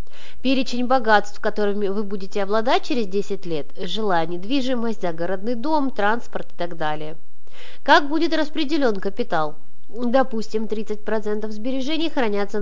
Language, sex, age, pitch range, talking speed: Russian, female, 20-39, 180-250 Hz, 120 wpm